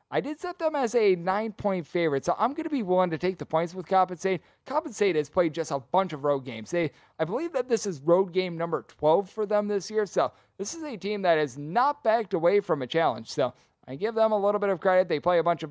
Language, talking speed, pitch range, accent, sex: English, 270 wpm, 155-195 Hz, American, male